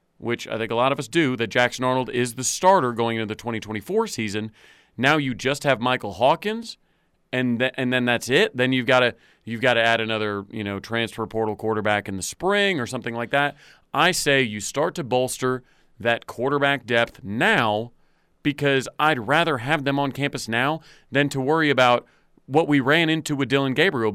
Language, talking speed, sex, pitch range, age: English, 200 wpm, male, 120-145 Hz, 40-59